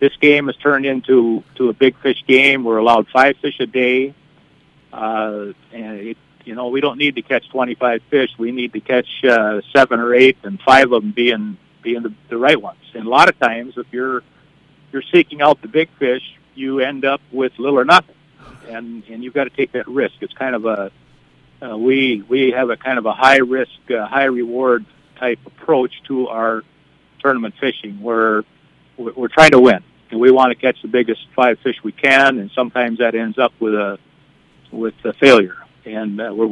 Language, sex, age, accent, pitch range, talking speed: English, male, 60-79, American, 115-135 Hz, 210 wpm